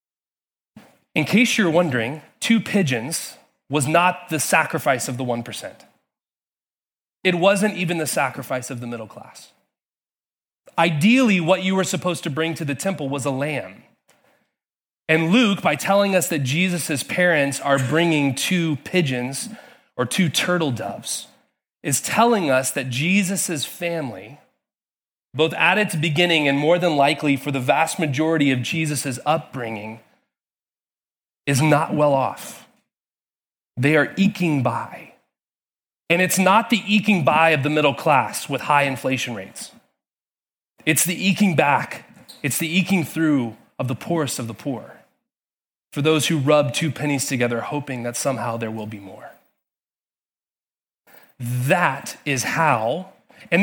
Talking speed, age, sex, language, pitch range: 140 wpm, 30-49, male, English, 135-185 Hz